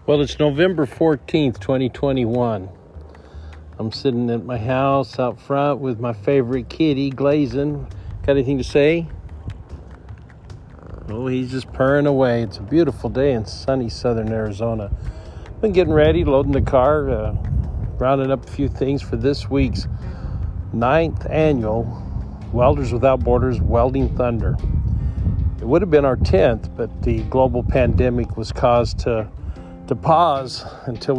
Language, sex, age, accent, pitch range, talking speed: English, male, 50-69, American, 105-135 Hz, 140 wpm